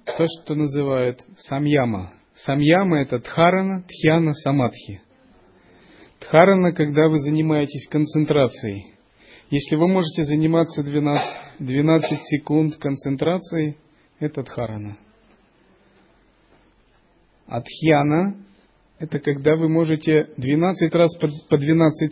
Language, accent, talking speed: Russian, native, 90 wpm